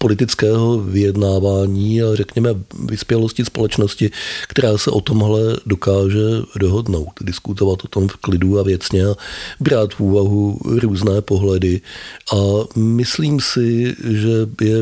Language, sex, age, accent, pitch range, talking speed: Czech, male, 40-59, native, 95-110 Hz, 120 wpm